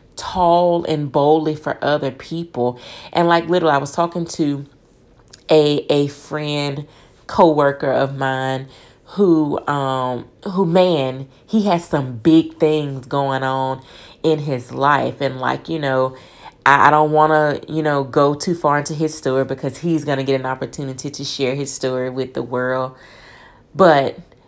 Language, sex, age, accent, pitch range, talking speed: English, female, 30-49, American, 135-170 Hz, 155 wpm